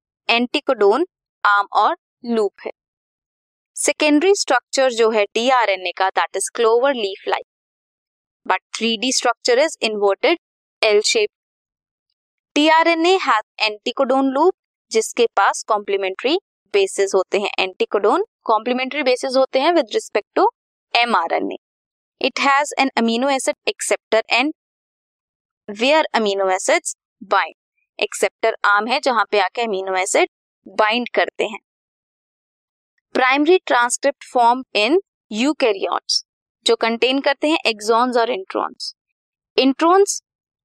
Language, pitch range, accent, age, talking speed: Hindi, 220-315 Hz, native, 20-39, 115 wpm